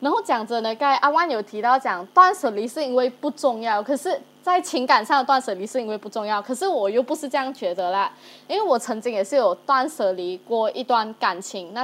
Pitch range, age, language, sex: 210-285 Hz, 20-39, Chinese, female